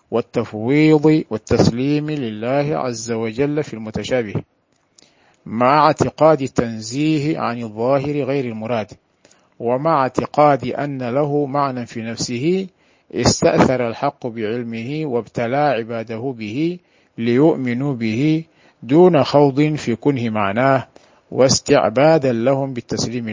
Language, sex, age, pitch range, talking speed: Arabic, male, 50-69, 115-150 Hz, 95 wpm